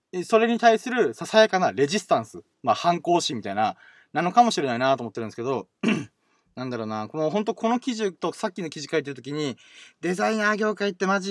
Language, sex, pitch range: Japanese, male, 145-225 Hz